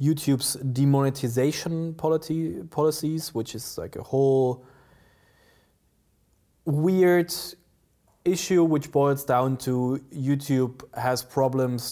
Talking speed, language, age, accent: 90 wpm, English, 20-39, German